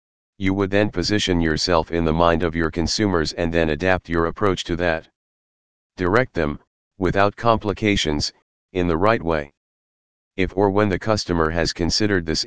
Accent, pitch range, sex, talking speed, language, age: American, 80-95 Hz, male, 165 wpm, English, 40-59